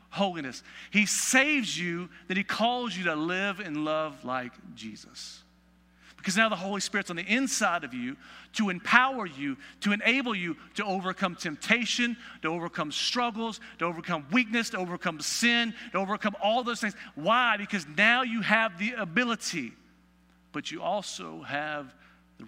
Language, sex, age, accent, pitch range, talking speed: English, male, 50-69, American, 135-225 Hz, 160 wpm